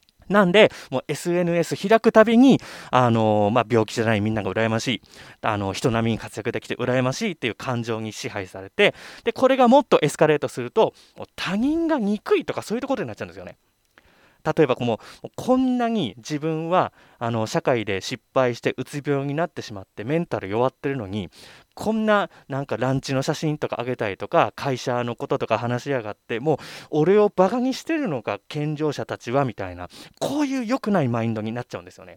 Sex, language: male, Japanese